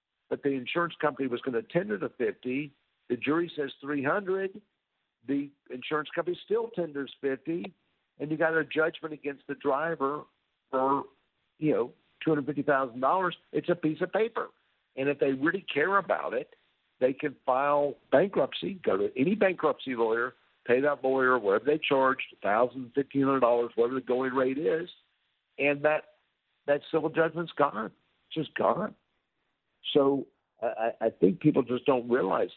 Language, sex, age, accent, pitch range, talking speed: English, male, 60-79, American, 130-160 Hz, 170 wpm